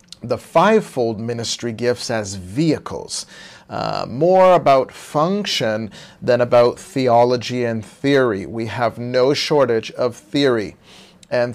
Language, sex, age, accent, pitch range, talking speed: English, male, 40-59, American, 120-160 Hz, 115 wpm